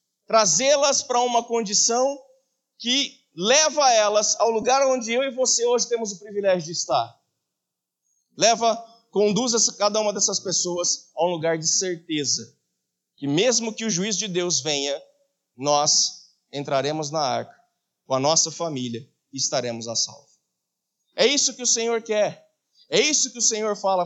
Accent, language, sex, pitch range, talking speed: Brazilian, Portuguese, male, 165-250 Hz, 150 wpm